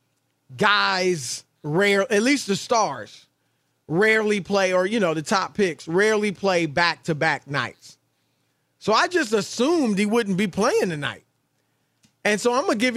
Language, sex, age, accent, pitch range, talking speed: English, male, 40-59, American, 150-210 Hz, 155 wpm